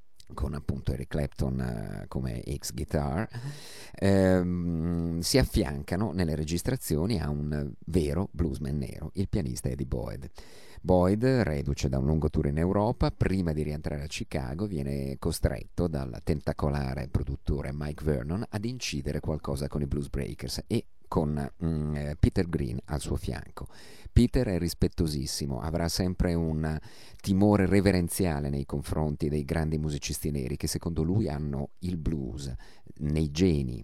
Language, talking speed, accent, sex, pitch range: Italian, 130 wpm, native, male, 75-90 Hz